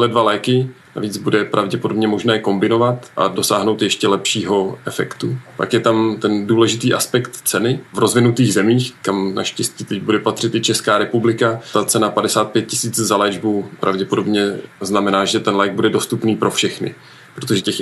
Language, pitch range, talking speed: Czech, 105-115 Hz, 160 wpm